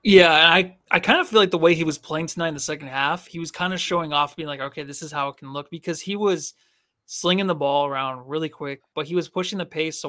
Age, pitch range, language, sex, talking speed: 20-39, 155-185 Hz, English, male, 285 wpm